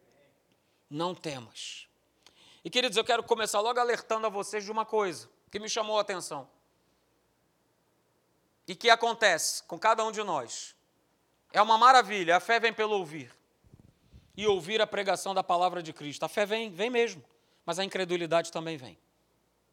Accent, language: Brazilian, Portuguese